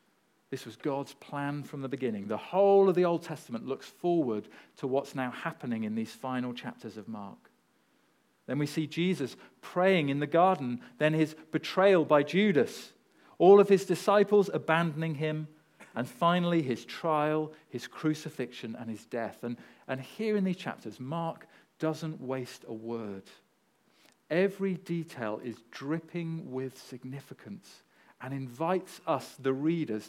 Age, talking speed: 40-59, 150 wpm